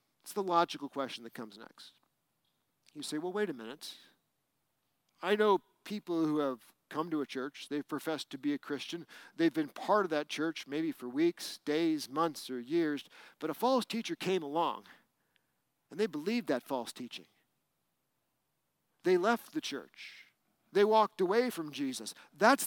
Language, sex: English, male